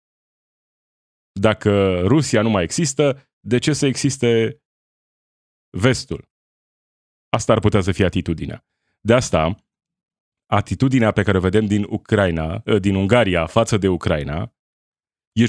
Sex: male